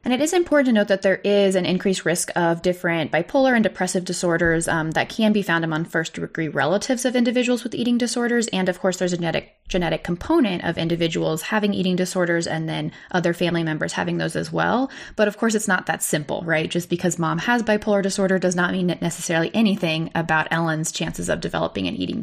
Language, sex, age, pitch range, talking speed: English, female, 20-39, 165-210 Hz, 215 wpm